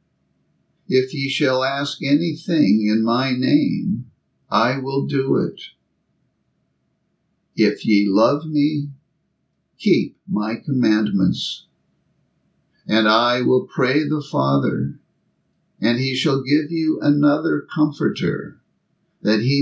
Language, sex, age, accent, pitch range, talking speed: English, male, 60-79, American, 110-150 Hz, 105 wpm